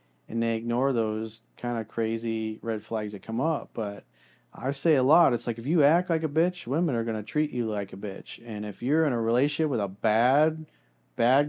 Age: 40-59